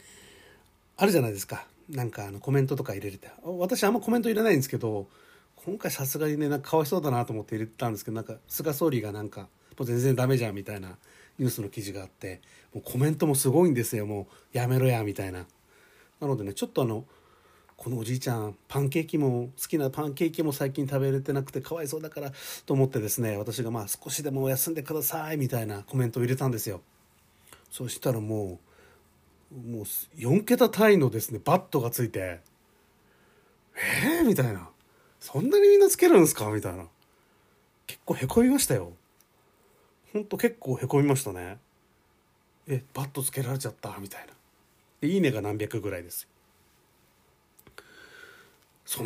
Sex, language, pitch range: male, Japanese, 105-150 Hz